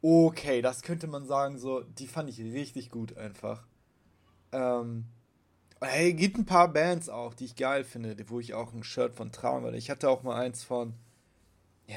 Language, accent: German, German